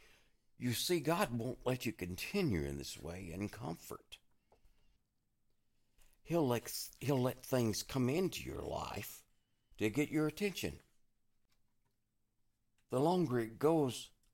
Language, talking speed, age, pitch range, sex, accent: English, 125 wpm, 60-79, 100-125 Hz, male, American